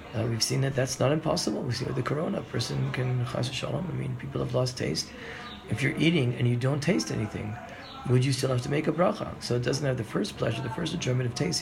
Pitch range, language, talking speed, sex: 115-135 Hz, English, 265 wpm, male